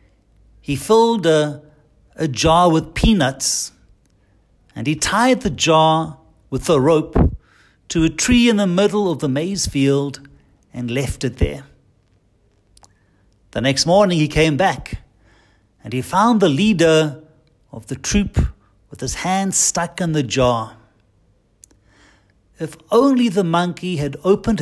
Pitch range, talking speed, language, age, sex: 105-170 Hz, 135 wpm, English, 50-69, male